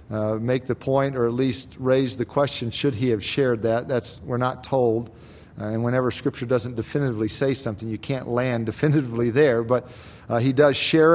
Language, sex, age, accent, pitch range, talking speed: English, male, 50-69, American, 115-140 Hz, 200 wpm